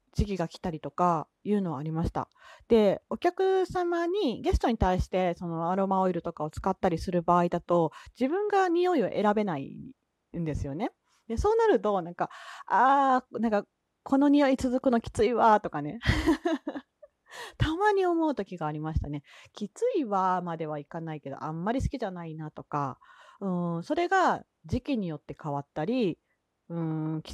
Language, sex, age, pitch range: Japanese, female, 30-49, 170-270 Hz